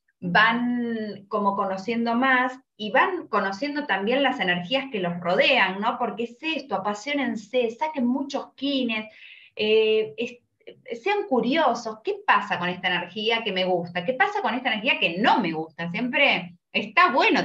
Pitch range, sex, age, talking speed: 190-275 Hz, female, 20-39, 150 wpm